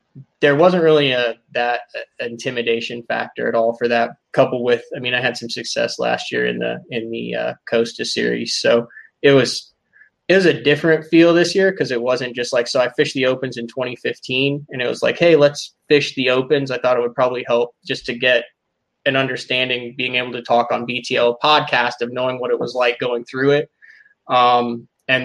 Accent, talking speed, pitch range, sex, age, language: American, 210 wpm, 120-135 Hz, male, 20-39, English